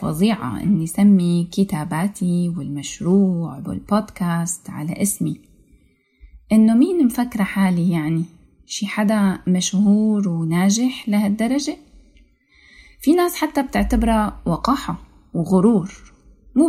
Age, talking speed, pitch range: 20-39, 85 wpm, 175-240 Hz